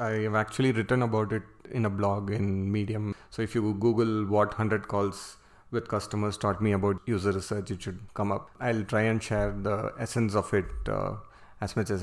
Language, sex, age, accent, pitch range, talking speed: English, male, 30-49, Indian, 100-110 Hz, 205 wpm